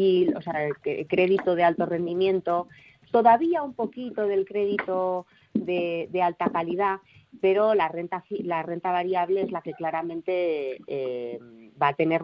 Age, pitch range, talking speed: 30-49, 165-200 Hz, 145 wpm